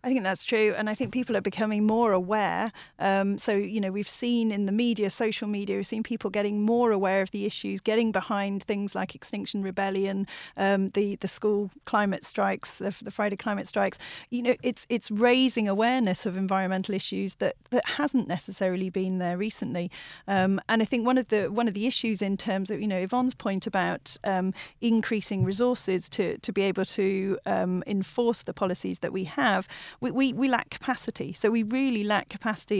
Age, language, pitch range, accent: 40-59, English, 190-230 Hz, British